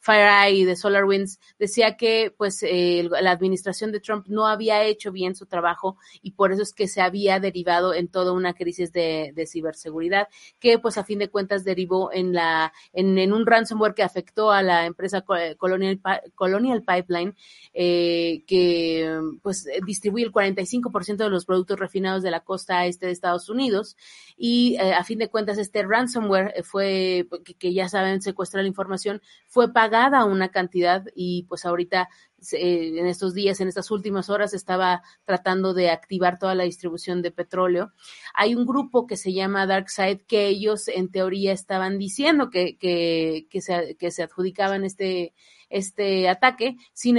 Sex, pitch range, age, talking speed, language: female, 180-210 Hz, 30-49, 170 wpm, Spanish